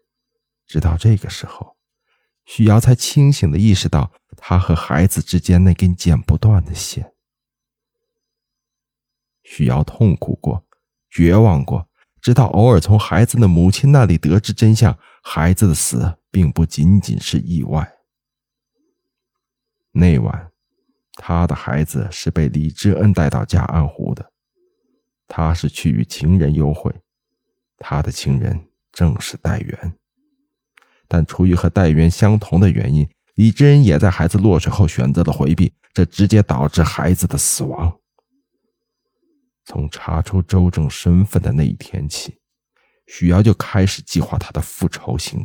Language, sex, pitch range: Chinese, male, 85-115 Hz